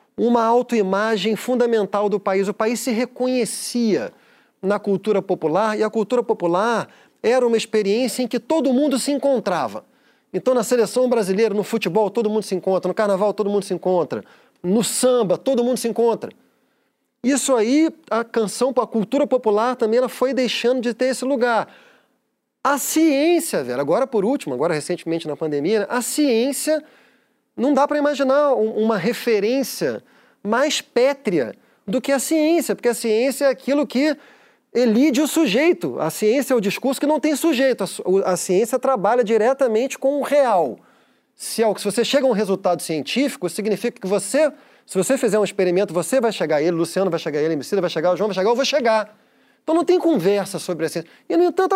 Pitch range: 205-275 Hz